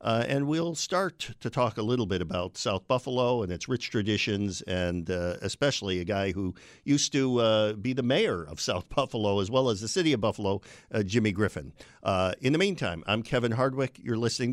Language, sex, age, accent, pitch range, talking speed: English, male, 50-69, American, 105-135 Hz, 205 wpm